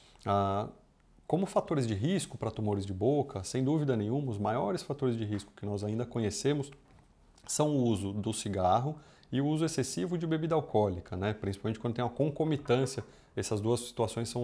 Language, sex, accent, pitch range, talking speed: Portuguese, male, Brazilian, 105-140 Hz, 175 wpm